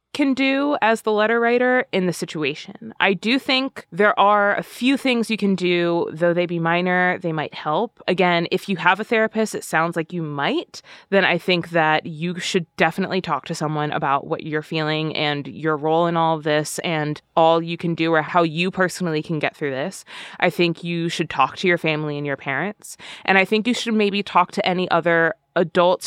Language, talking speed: English, 215 wpm